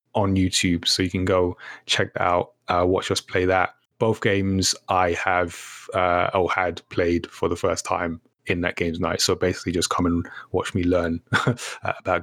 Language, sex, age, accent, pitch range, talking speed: English, male, 20-39, British, 95-115 Hz, 190 wpm